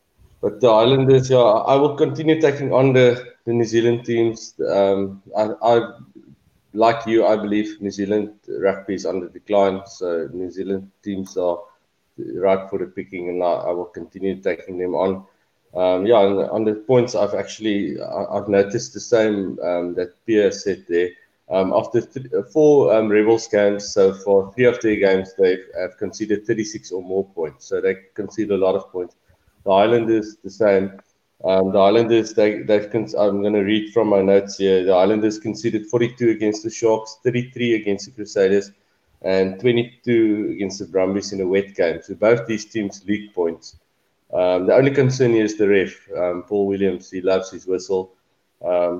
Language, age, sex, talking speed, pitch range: English, 20-39, male, 185 wpm, 95-115 Hz